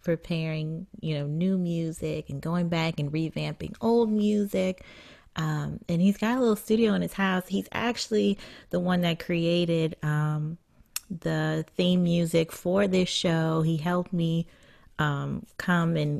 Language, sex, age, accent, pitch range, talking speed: English, female, 20-39, American, 150-185 Hz, 150 wpm